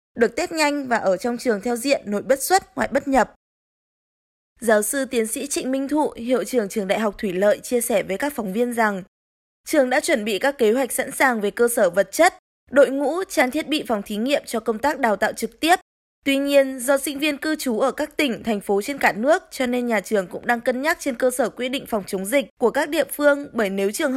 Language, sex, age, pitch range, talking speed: Vietnamese, female, 20-39, 220-285 Hz, 255 wpm